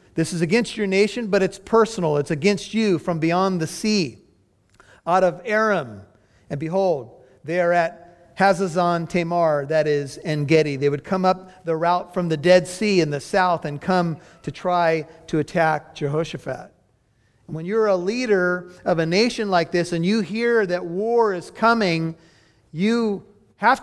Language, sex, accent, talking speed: English, male, American, 170 wpm